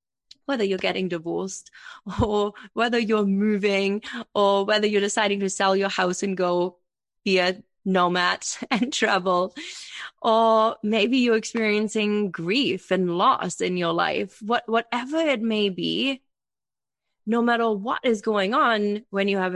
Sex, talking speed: female, 145 wpm